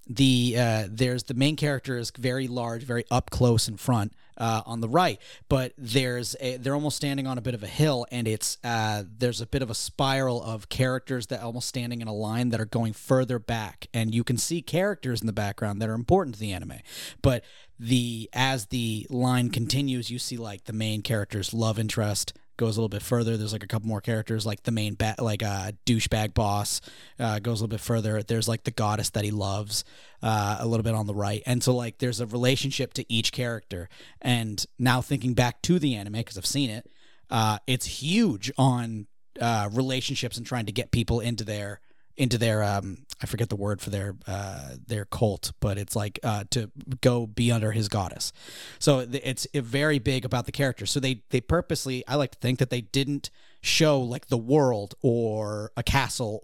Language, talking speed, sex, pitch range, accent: English, 215 wpm, male, 110-130 Hz, American